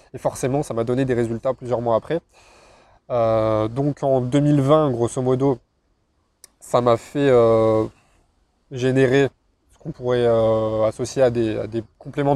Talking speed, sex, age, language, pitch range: 145 wpm, male, 20-39, French, 115-135 Hz